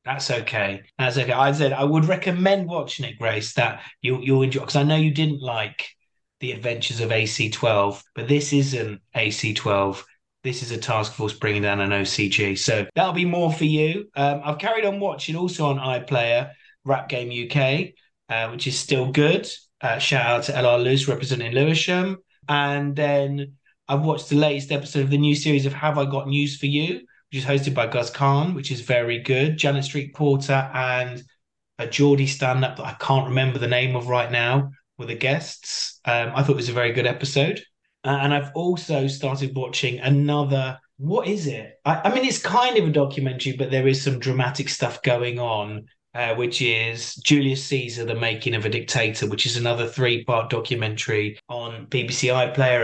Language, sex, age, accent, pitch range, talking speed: English, male, 30-49, British, 120-145 Hz, 195 wpm